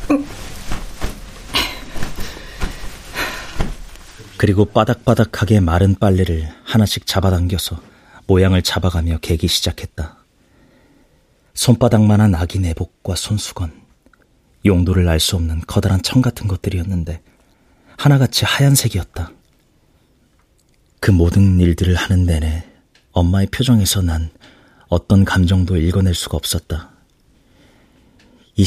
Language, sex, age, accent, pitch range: Korean, male, 40-59, native, 85-100 Hz